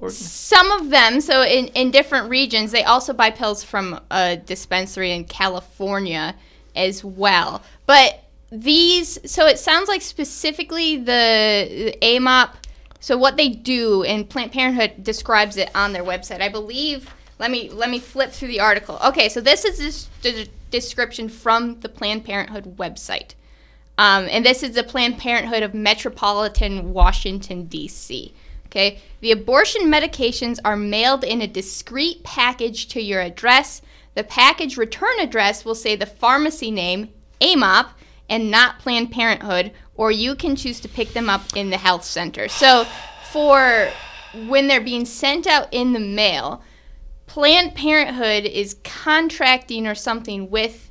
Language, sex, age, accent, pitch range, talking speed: English, female, 10-29, American, 205-270 Hz, 155 wpm